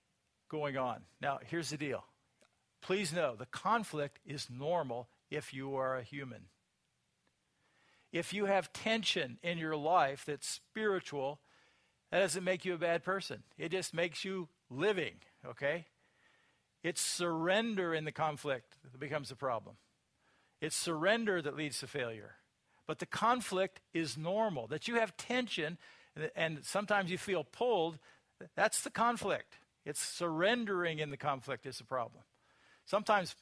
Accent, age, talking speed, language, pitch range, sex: American, 50-69, 145 wpm, English, 140-190 Hz, male